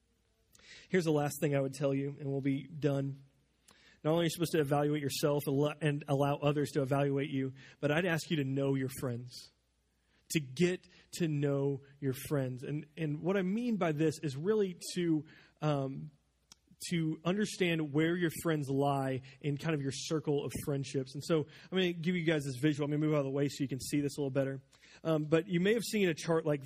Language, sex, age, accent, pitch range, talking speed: English, male, 30-49, American, 145-180 Hz, 225 wpm